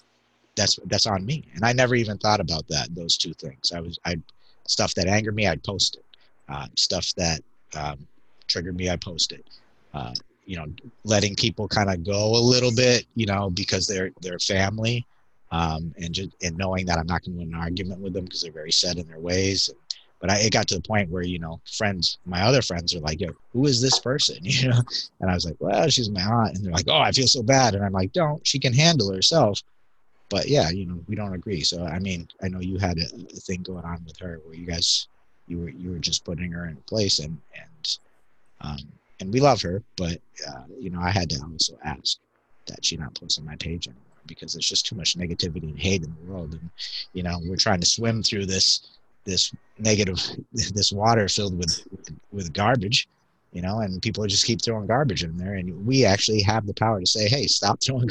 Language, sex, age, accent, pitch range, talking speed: English, male, 30-49, American, 85-110 Hz, 235 wpm